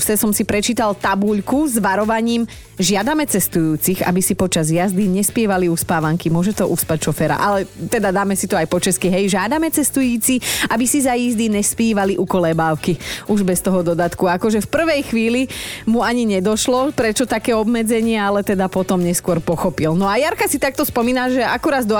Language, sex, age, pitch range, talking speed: Slovak, female, 30-49, 175-230 Hz, 175 wpm